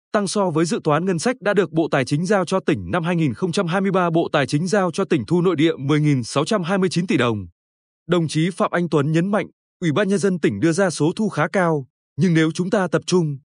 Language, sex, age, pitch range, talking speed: Vietnamese, male, 20-39, 150-205 Hz, 235 wpm